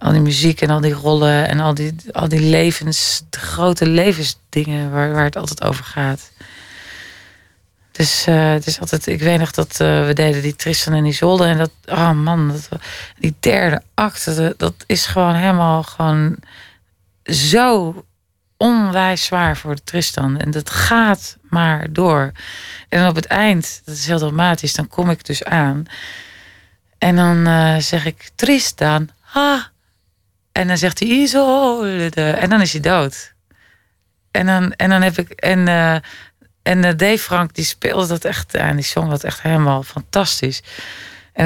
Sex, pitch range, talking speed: female, 150-185 Hz, 170 wpm